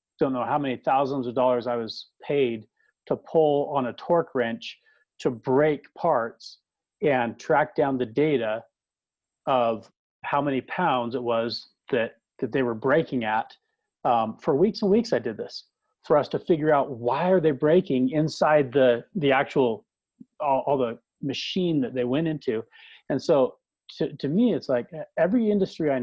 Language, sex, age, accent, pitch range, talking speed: English, male, 40-59, American, 120-160 Hz, 175 wpm